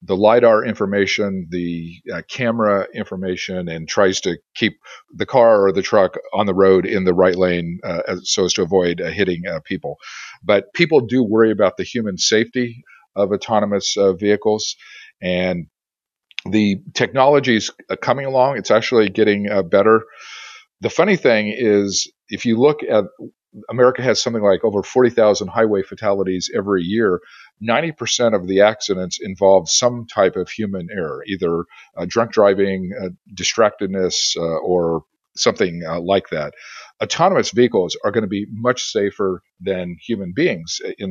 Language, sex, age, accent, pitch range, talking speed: English, male, 50-69, American, 90-110 Hz, 155 wpm